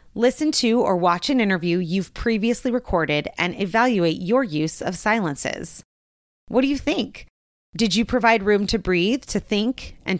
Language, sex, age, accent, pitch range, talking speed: English, female, 30-49, American, 180-260 Hz, 165 wpm